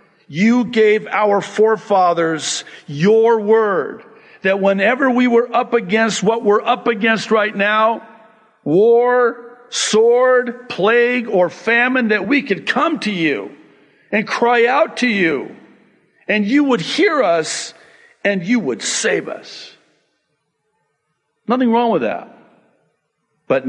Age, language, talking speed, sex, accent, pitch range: 50-69, English, 125 wpm, male, American, 180-235 Hz